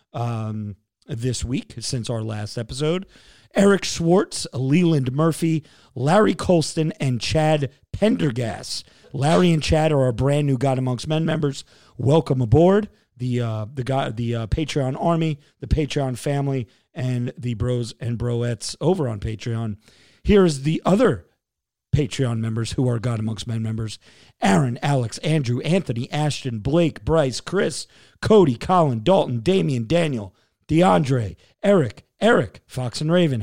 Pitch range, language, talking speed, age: 120-165 Hz, English, 140 wpm, 40-59